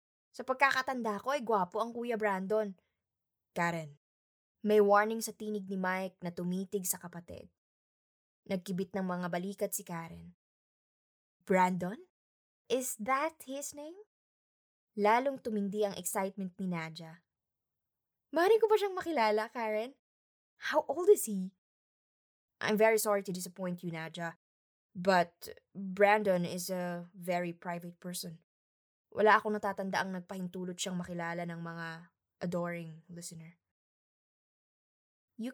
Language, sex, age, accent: Filipino, female, 20-39, native